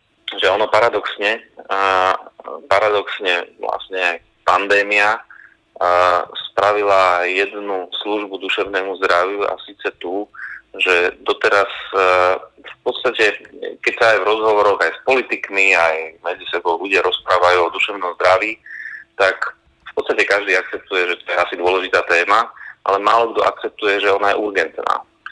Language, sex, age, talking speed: Czech, male, 30-49, 125 wpm